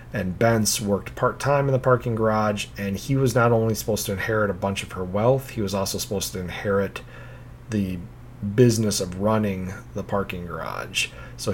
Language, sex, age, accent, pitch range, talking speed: English, male, 40-59, American, 95-125 Hz, 180 wpm